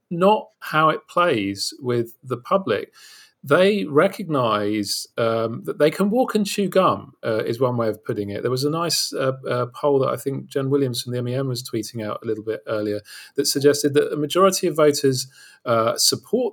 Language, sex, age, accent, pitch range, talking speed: English, male, 40-59, British, 125-155 Hz, 195 wpm